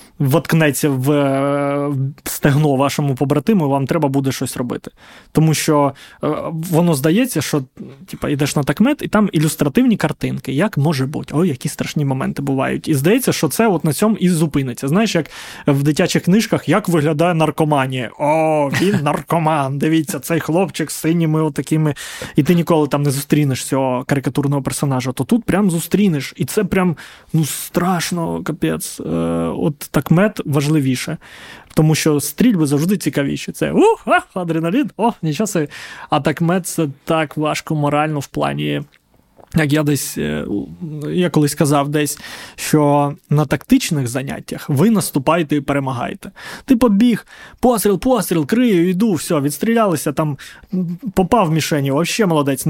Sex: male